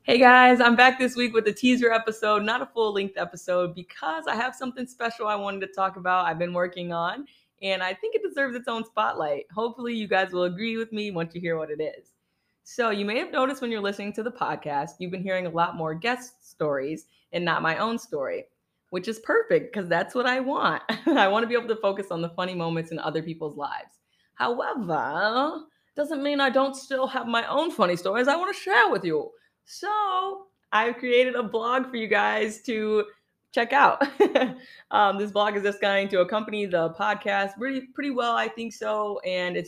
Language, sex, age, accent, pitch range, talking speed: English, female, 20-39, American, 175-245 Hz, 210 wpm